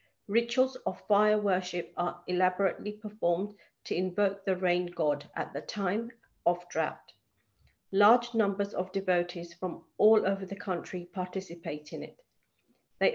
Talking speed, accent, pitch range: 135 wpm, British, 170-210 Hz